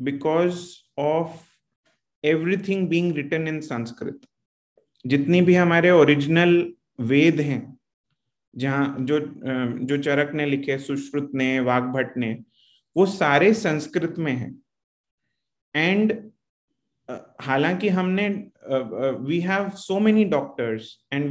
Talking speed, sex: 115 wpm, male